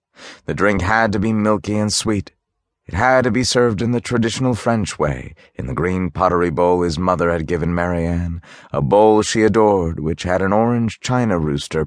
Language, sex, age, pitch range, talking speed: English, male, 30-49, 80-110 Hz, 190 wpm